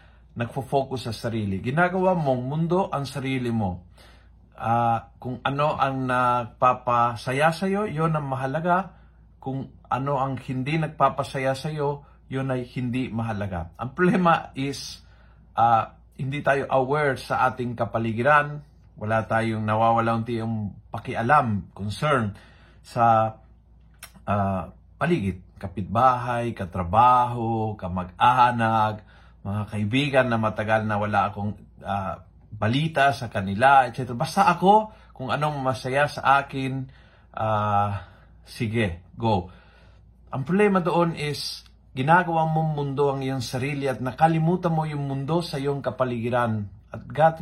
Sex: male